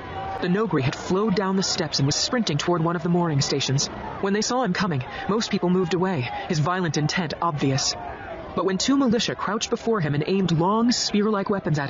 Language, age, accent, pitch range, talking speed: English, 30-49, American, 150-215 Hz, 210 wpm